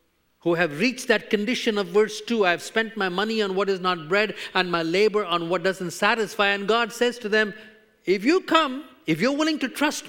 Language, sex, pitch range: English, male, 160-235 Hz